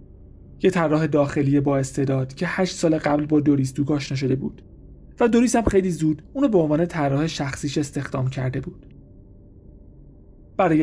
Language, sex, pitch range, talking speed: Persian, male, 130-160 Hz, 160 wpm